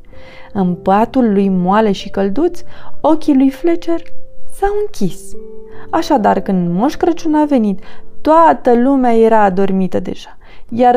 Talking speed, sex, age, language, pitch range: 125 wpm, female, 20-39, Romanian, 195-295 Hz